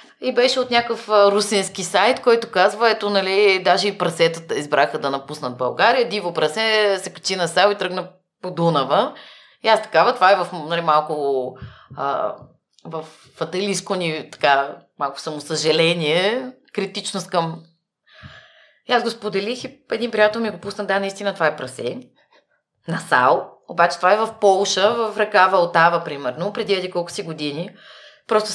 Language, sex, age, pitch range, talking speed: Bulgarian, female, 20-39, 150-205 Hz, 160 wpm